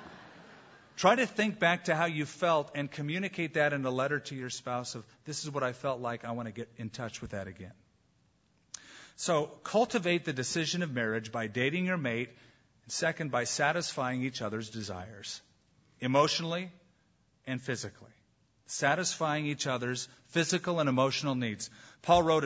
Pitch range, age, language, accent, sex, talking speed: 120-160 Hz, 40-59, English, American, male, 165 wpm